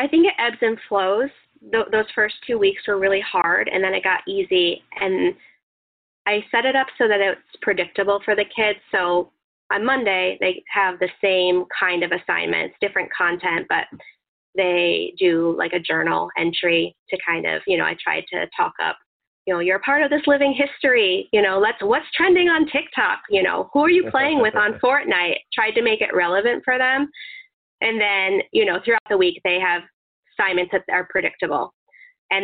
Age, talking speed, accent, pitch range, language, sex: 20-39, 195 wpm, American, 190-295 Hz, English, female